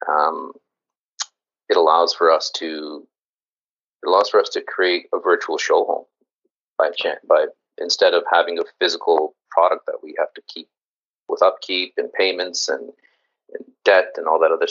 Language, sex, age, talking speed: English, male, 30-49, 165 wpm